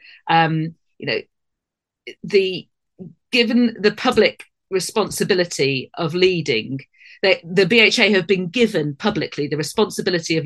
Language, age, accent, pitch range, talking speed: English, 40-59, British, 150-185 Hz, 115 wpm